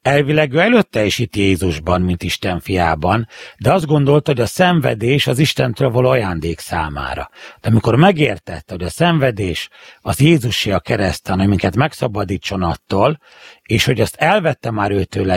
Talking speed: 155 wpm